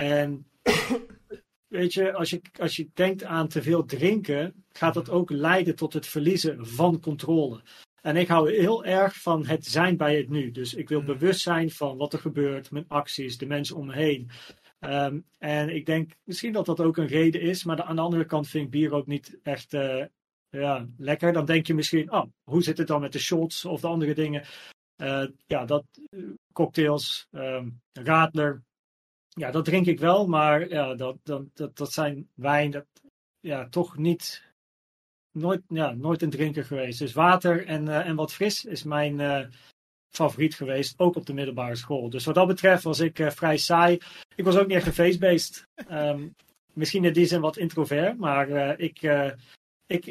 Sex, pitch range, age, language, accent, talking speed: male, 145-175 Hz, 40-59, Dutch, Dutch, 195 wpm